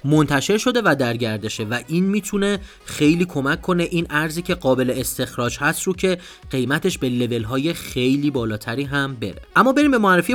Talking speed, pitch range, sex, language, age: 175 wpm, 125-170 Hz, male, Persian, 30-49